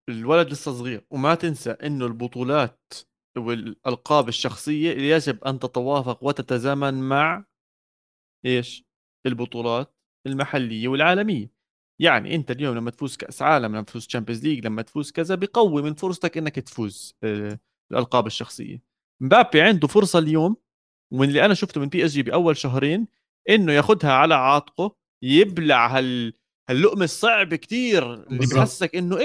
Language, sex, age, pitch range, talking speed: Arabic, male, 30-49, 125-185 Hz, 135 wpm